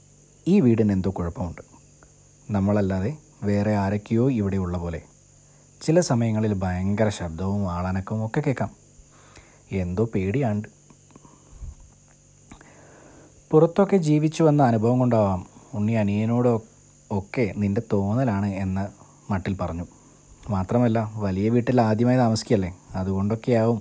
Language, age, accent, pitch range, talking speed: Malayalam, 30-49, native, 100-135 Hz, 95 wpm